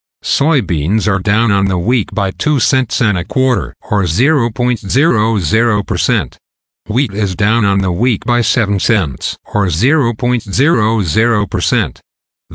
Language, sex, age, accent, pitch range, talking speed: English, male, 50-69, American, 95-125 Hz, 120 wpm